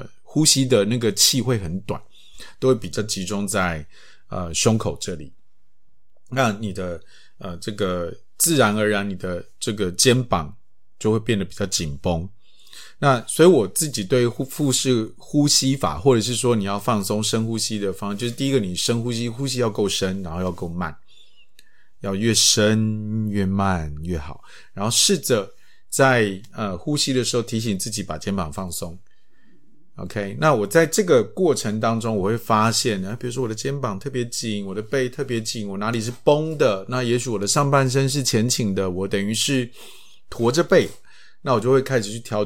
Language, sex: Chinese, male